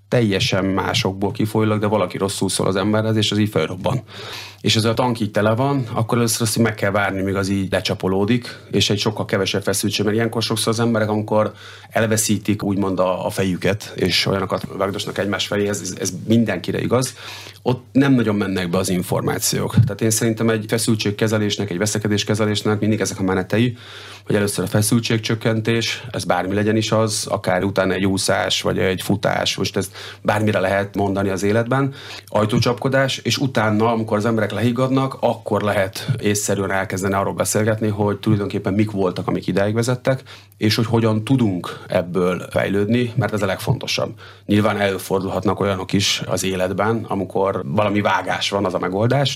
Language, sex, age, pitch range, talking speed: Hungarian, male, 30-49, 95-115 Hz, 165 wpm